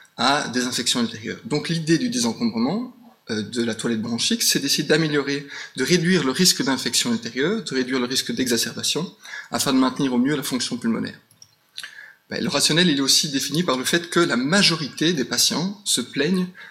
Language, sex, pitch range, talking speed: French, male, 130-205 Hz, 185 wpm